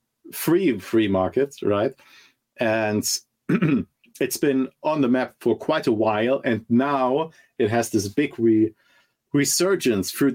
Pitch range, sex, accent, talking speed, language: 105-120 Hz, male, German, 130 wpm, English